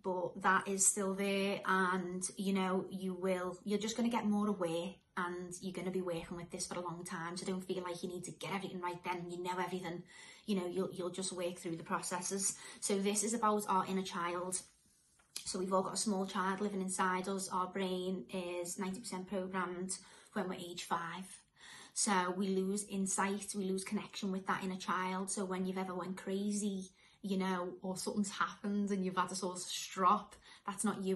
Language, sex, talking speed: English, female, 210 wpm